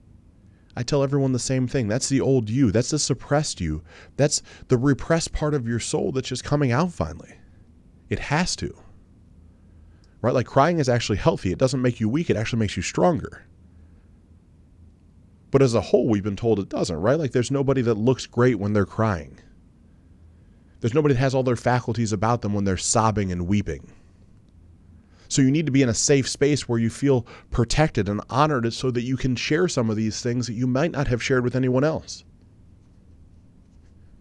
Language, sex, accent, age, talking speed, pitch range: English, male, American, 30-49, 195 wpm, 90-125 Hz